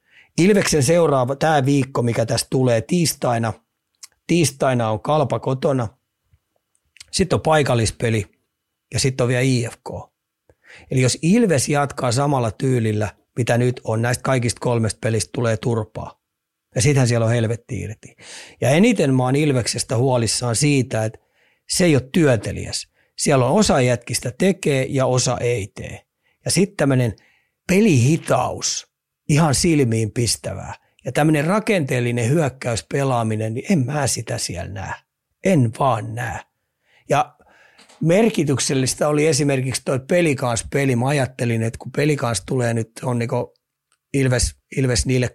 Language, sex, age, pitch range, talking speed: Finnish, male, 30-49, 115-140 Hz, 130 wpm